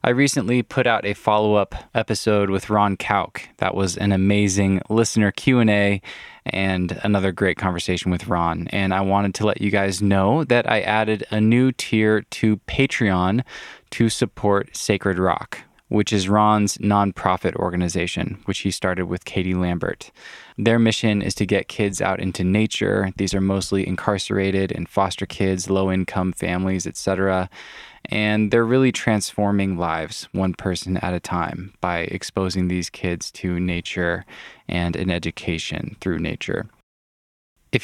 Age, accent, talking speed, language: 20-39, American, 150 wpm, English